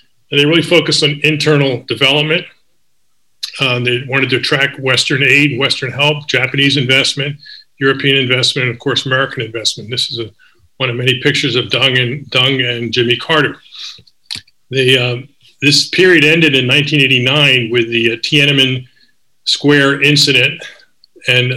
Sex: male